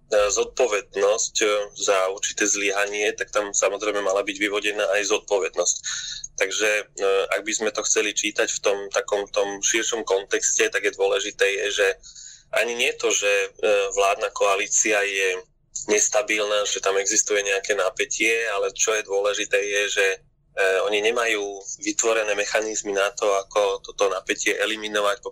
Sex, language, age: male, Slovak, 20-39